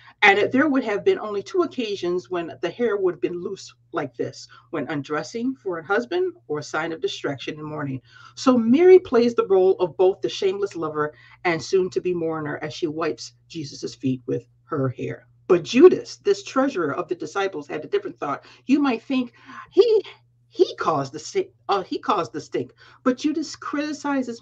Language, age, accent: English, 50-69, American